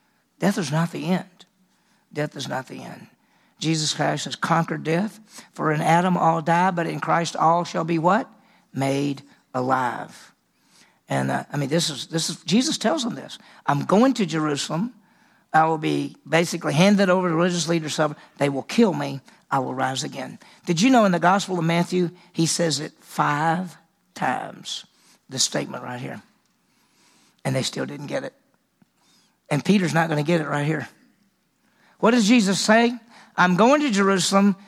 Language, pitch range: English, 165-210 Hz